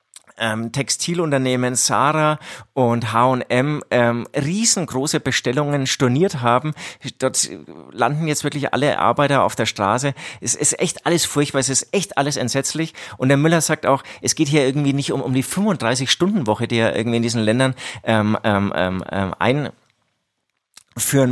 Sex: male